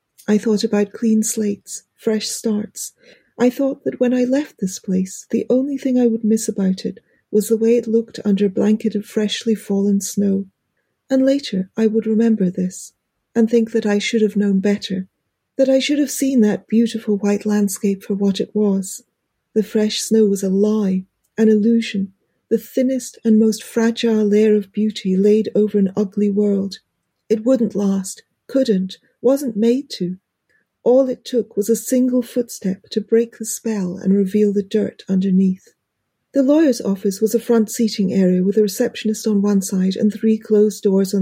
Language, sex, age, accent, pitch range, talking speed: English, female, 40-59, British, 200-235 Hz, 180 wpm